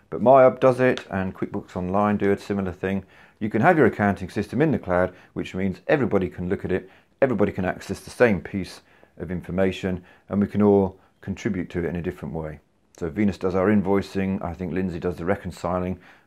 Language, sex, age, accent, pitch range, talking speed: English, male, 40-59, British, 90-105 Hz, 210 wpm